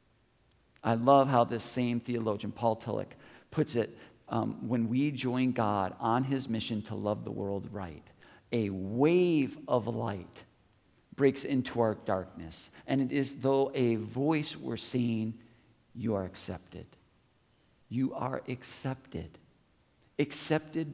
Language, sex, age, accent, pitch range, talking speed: English, male, 50-69, American, 110-145 Hz, 130 wpm